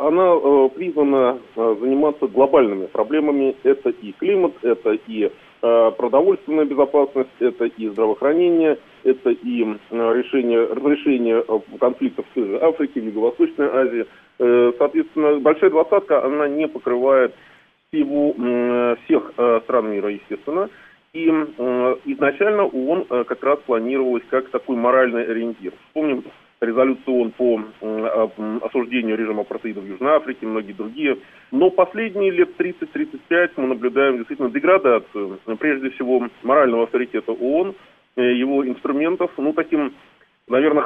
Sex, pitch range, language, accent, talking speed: male, 120-160 Hz, Russian, native, 125 wpm